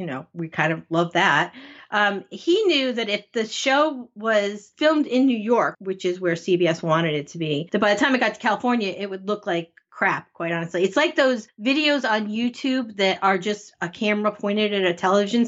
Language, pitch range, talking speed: English, 190-250 Hz, 220 wpm